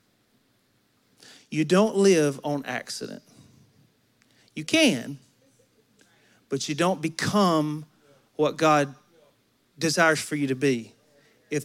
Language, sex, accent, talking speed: English, male, American, 100 wpm